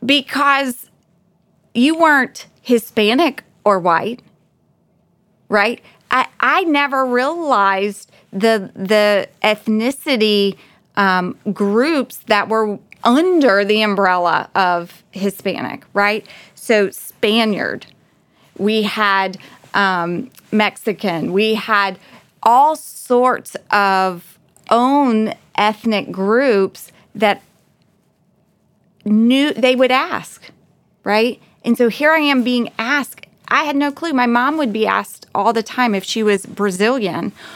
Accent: American